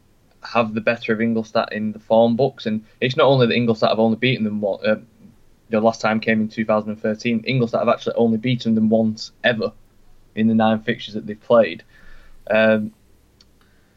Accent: British